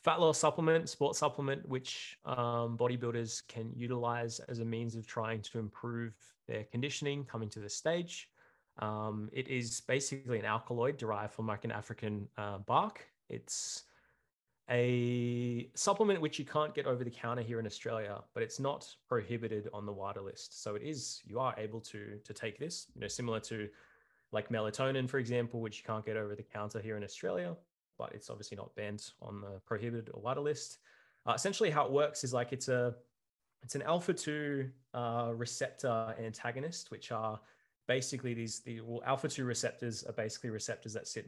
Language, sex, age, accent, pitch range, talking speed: English, male, 20-39, Australian, 110-130 Hz, 180 wpm